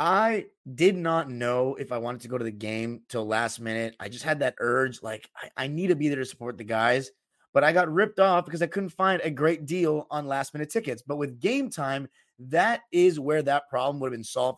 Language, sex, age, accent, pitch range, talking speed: English, male, 30-49, American, 125-170 Hz, 245 wpm